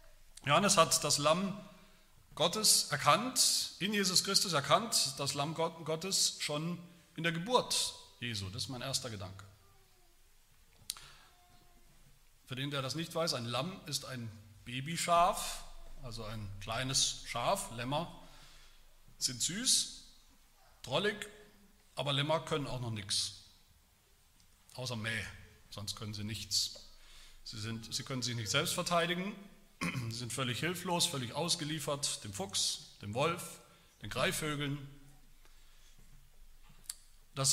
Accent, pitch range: German, 120-170 Hz